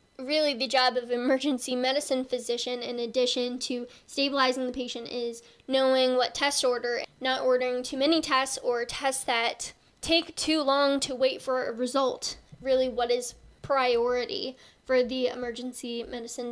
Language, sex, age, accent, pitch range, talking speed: English, female, 10-29, American, 245-275 Hz, 155 wpm